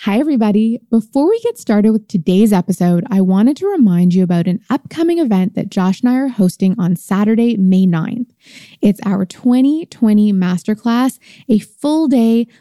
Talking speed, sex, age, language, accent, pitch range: 160 wpm, female, 20-39, English, American, 195-240 Hz